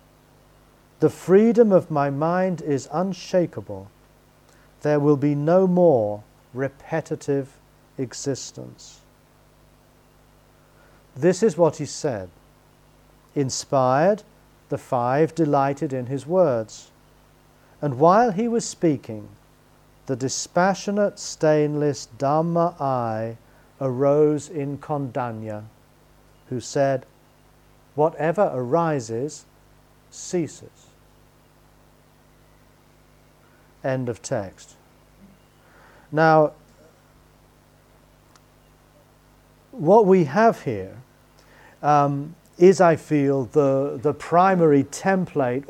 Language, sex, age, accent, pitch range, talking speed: English, male, 40-59, British, 130-160 Hz, 80 wpm